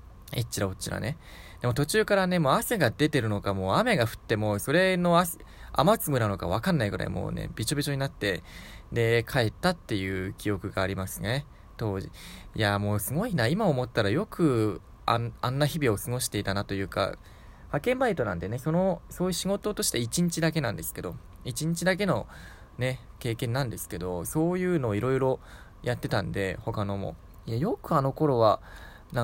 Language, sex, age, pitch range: Japanese, male, 20-39, 100-150 Hz